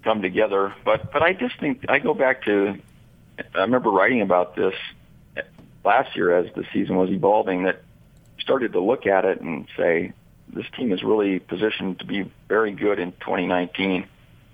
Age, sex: 50-69, male